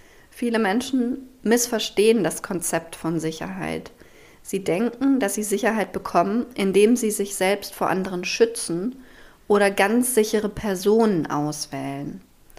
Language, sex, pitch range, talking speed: German, female, 185-225 Hz, 120 wpm